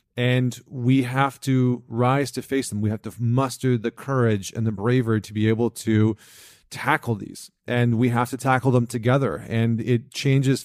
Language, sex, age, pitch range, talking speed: English, male, 40-59, 110-125 Hz, 185 wpm